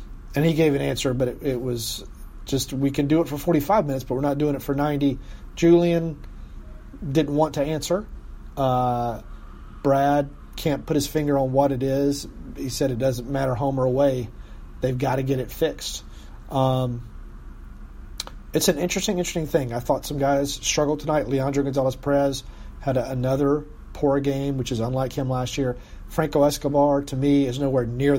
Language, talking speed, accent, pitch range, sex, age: English, 180 wpm, American, 125-145 Hz, male, 40-59